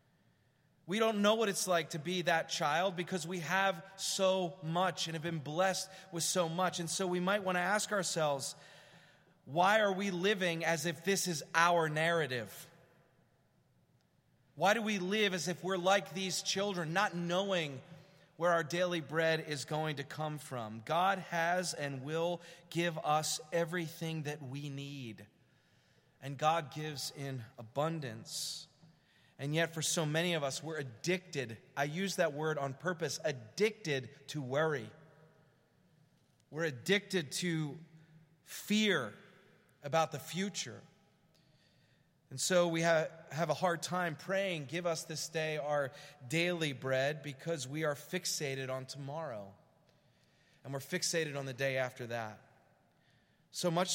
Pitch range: 145-180 Hz